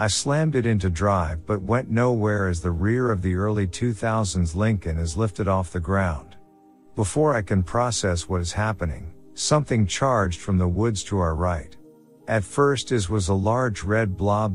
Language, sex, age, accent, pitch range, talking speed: English, male, 50-69, American, 90-110 Hz, 180 wpm